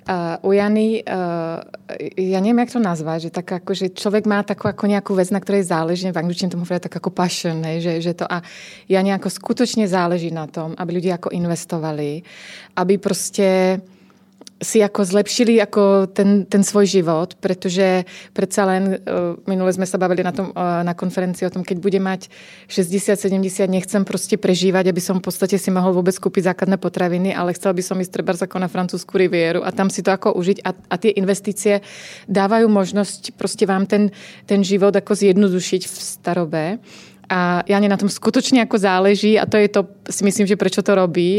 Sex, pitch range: female, 185-205 Hz